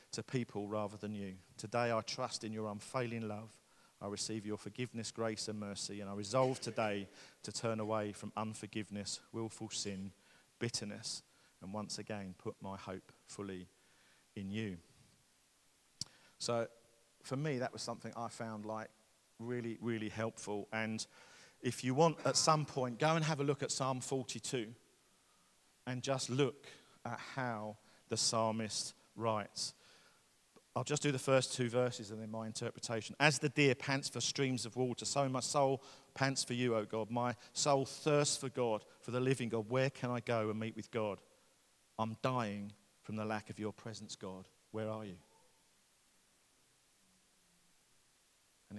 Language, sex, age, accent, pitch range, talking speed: English, male, 40-59, British, 105-125 Hz, 160 wpm